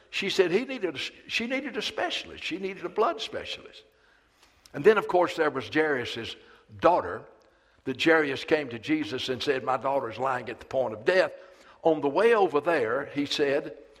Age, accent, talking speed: 60-79, American, 195 wpm